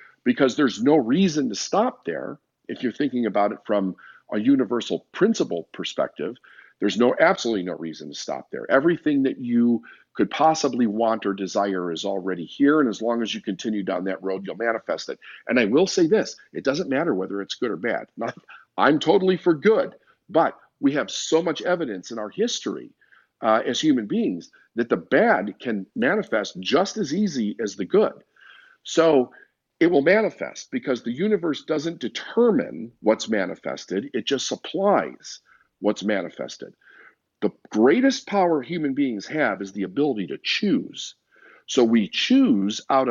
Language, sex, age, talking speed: English, male, 50-69, 170 wpm